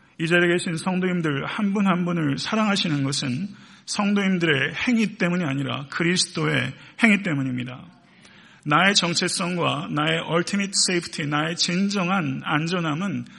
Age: 40-59